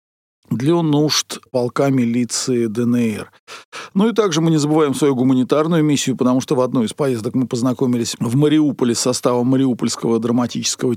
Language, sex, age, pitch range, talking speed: Russian, male, 50-69, 120-140 Hz, 155 wpm